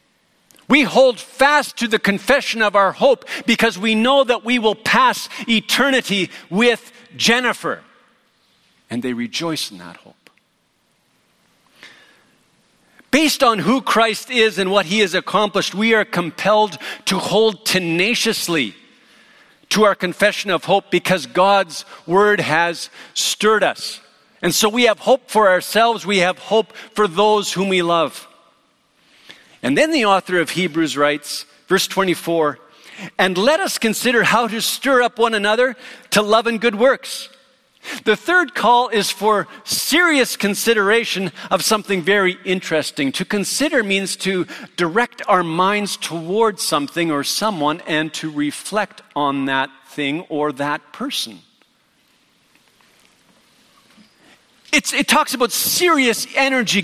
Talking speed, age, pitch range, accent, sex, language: 135 wpm, 50-69, 180-240 Hz, American, male, English